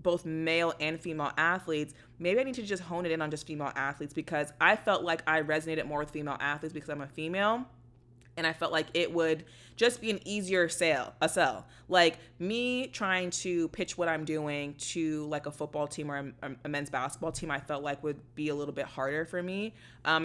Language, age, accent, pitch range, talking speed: English, 20-39, American, 145-170 Hz, 220 wpm